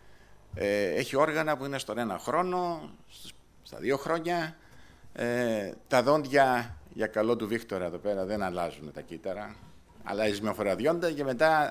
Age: 50-69